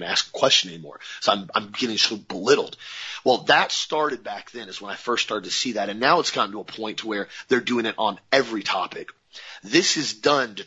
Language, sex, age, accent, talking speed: English, male, 40-59, American, 230 wpm